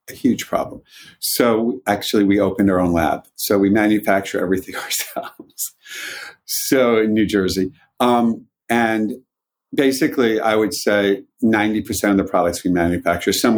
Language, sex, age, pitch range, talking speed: English, male, 50-69, 95-120 Hz, 145 wpm